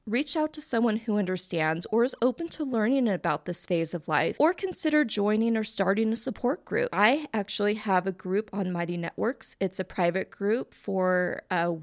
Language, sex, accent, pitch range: English, female, American, 185-240 Hz